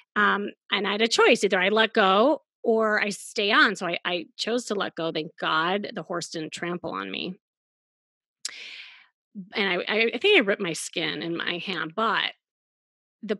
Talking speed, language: 190 wpm, English